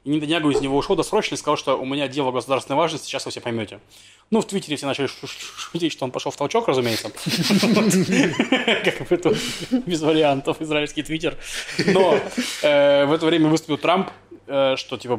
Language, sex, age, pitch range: Russian, male, 20-39, 125-165 Hz